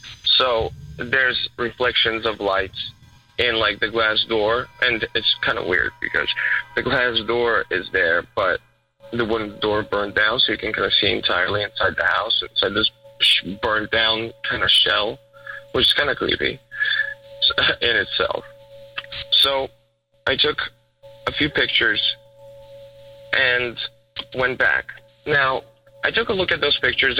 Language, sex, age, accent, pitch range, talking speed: English, male, 20-39, American, 110-135 Hz, 150 wpm